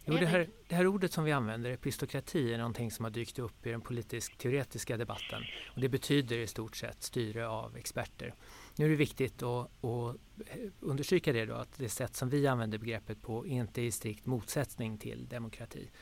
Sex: male